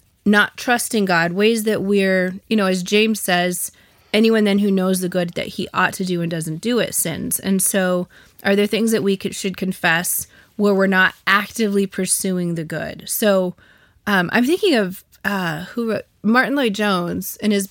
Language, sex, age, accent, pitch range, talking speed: English, female, 20-39, American, 180-215 Hz, 190 wpm